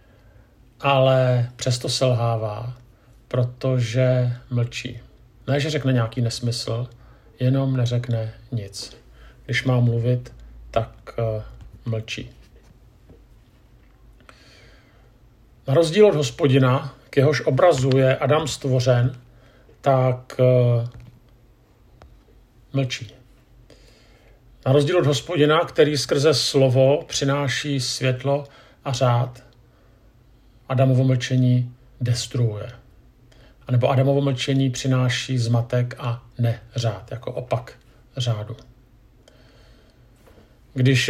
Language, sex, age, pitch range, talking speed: Czech, male, 50-69, 120-135 Hz, 80 wpm